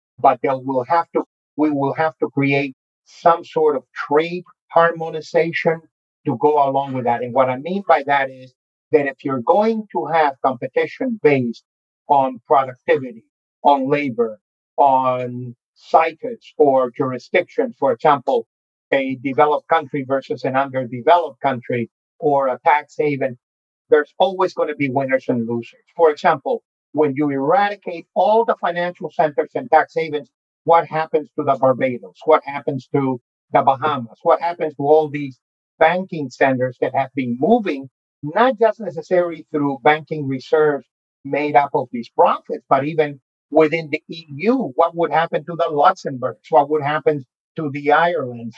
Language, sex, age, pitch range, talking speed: English, male, 50-69, 135-165 Hz, 155 wpm